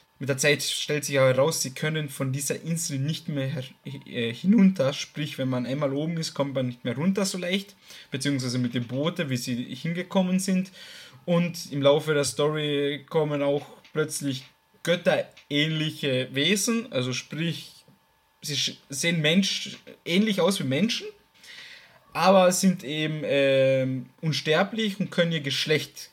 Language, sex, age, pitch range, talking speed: German, male, 20-39, 140-180 Hz, 145 wpm